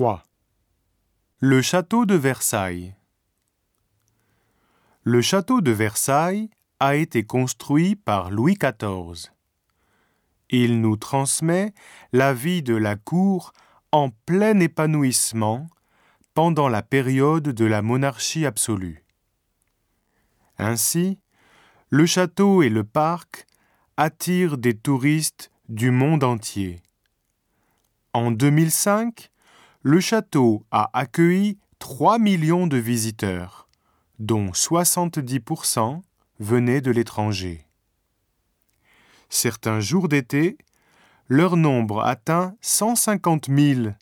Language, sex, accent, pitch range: Japanese, male, French, 110-165 Hz